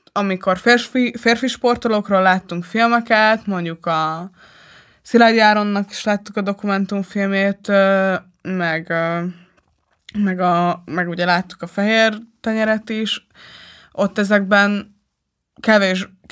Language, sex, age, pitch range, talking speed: Hungarian, female, 20-39, 180-210 Hz, 105 wpm